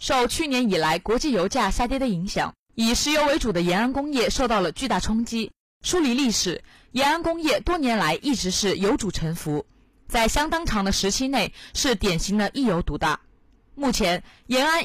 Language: Chinese